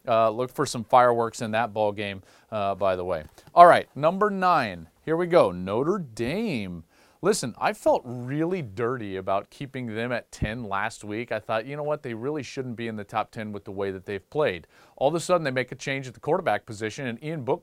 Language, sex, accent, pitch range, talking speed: English, male, American, 115-165 Hz, 230 wpm